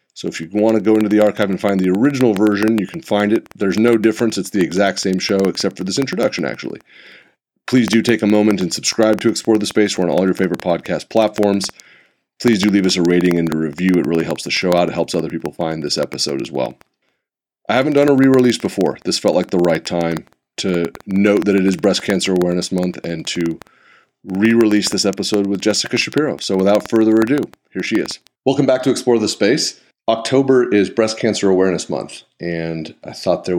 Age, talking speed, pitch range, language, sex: 30-49, 225 wpm, 95-115 Hz, English, male